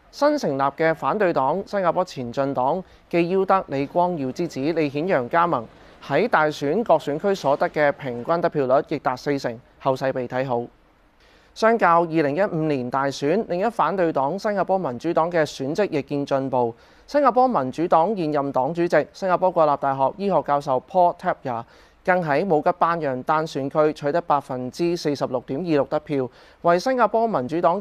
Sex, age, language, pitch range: male, 30-49, Chinese, 135-175 Hz